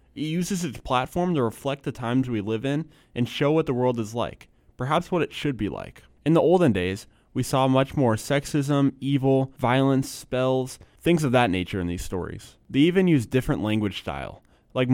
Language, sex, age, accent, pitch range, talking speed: English, male, 20-39, American, 105-135 Hz, 200 wpm